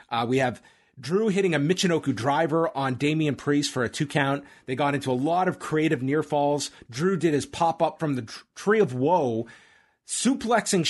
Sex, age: male, 30-49